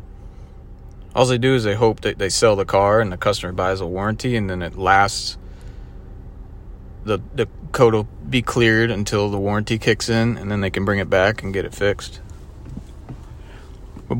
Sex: male